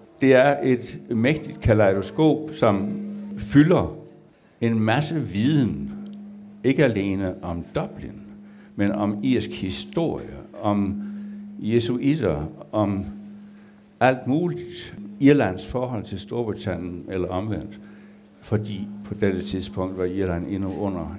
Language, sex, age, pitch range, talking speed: Danish, male, 60-79, 95-130 Hz, 105 wpm